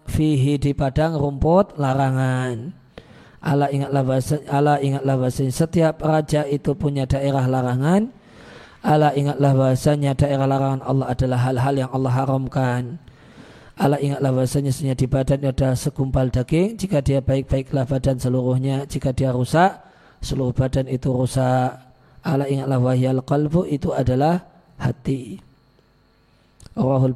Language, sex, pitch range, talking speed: Indonesian, male, 130-155 Hz, 120 wpm